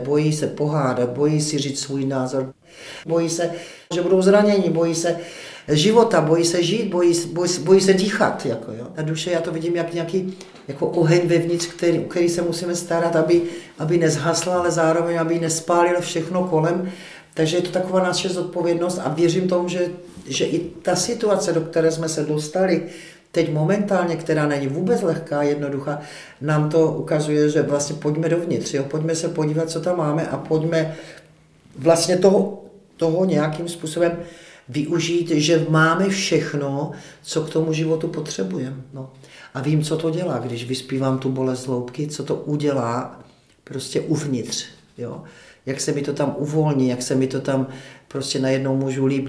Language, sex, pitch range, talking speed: Czech, male, 145-170 Hz, 165 wpm